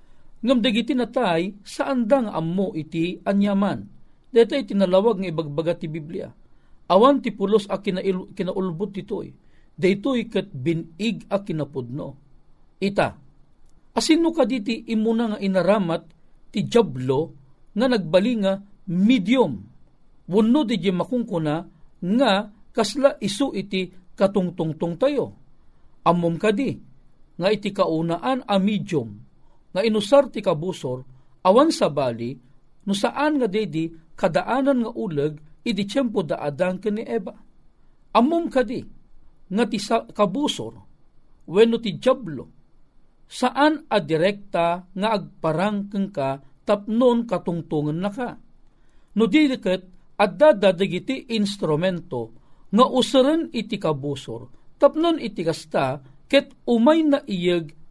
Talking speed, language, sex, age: 110 wpm, Filipino, male, 50-69